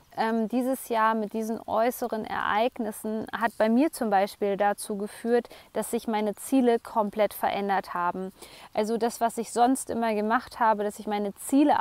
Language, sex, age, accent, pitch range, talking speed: German, female, 20-39, German, 210-235 Hz, 170 wpm